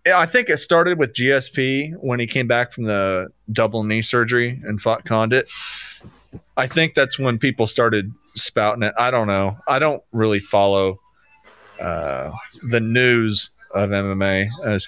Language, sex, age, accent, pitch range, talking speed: English, male, 30-49, American, 105-130 Hz, 155 wpm